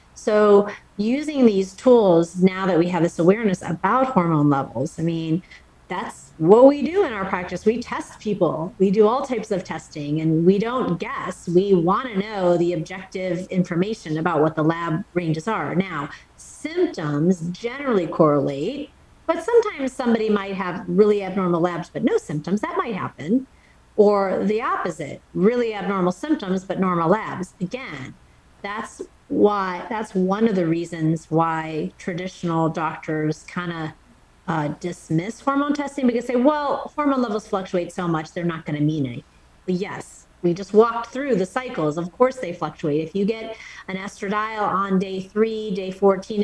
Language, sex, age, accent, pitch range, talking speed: English, female, 40-59, American, 165-215 Hz, 165 wpm